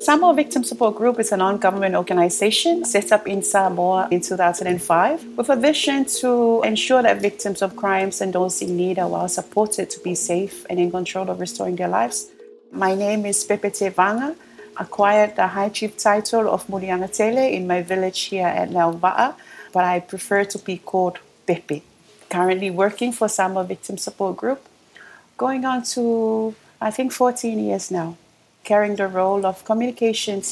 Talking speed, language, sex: 165 wpm, English, female